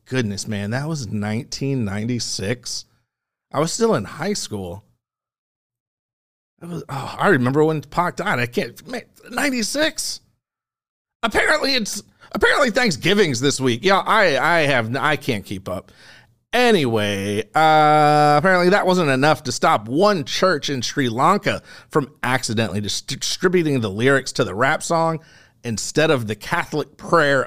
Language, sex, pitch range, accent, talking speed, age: English, male, 115-165 Hz, American, 135 wpm, 40-59